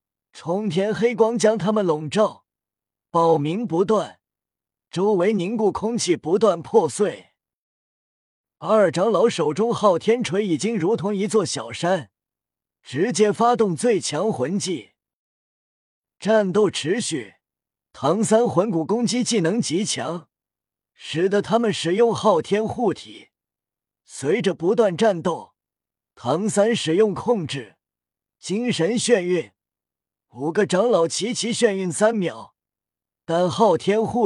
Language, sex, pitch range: Chinese, male, 160-220 Hz